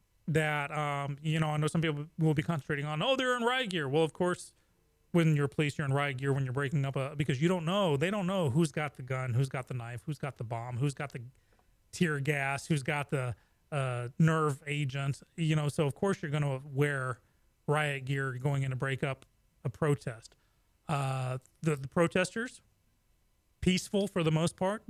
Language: English